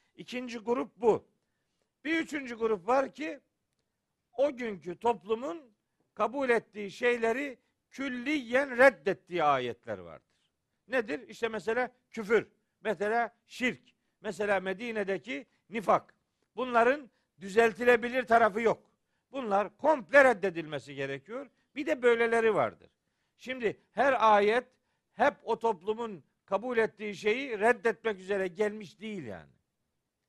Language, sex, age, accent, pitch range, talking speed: Turkish, male, 50-69, native, 200-250 Hz, 105 wpm